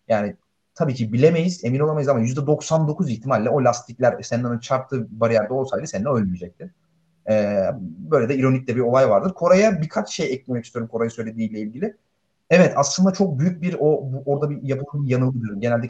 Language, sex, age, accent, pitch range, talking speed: Turkish, male, 30-49, native, 110-140 Hz, 165 wpm